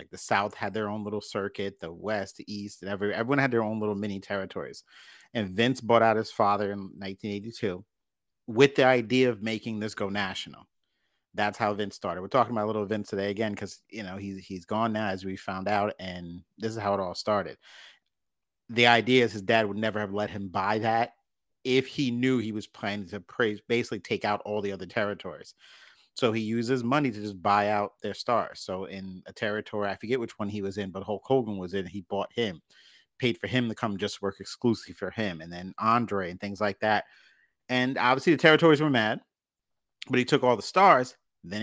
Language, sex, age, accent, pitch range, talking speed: English, male, 30-49, American, 100-115 Hz, 220 wpm